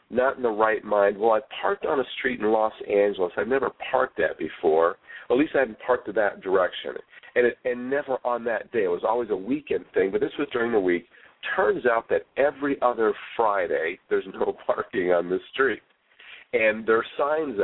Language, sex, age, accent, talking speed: English, male, 50-69, American, 210 wpm